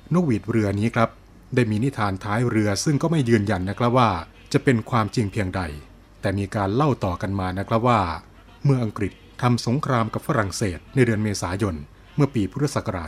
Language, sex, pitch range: Thai, male, 100-125 Hz